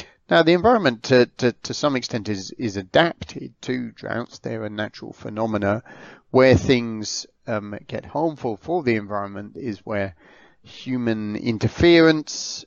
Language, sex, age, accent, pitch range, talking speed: English, male, 40-59, British, 100-120 Hz, 135 wpm